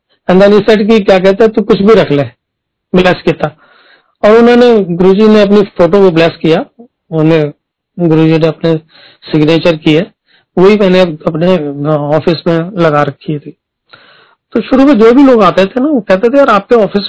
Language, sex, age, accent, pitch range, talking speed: Hindi, male, 40-59, native, 160-205 Hz, 180 wpm